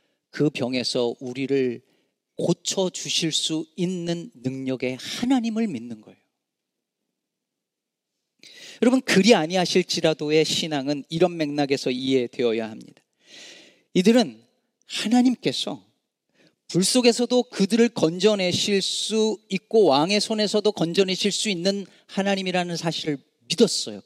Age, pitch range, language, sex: 40-59, 140-210 Hz, Korean, male